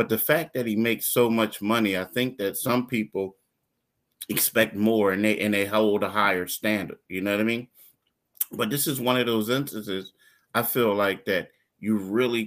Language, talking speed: English, 200 wpm